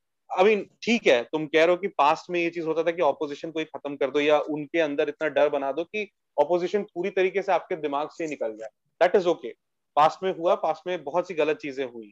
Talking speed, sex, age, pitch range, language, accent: 250 wpm, male, 30-49, 150-190 Hz, Hindi, native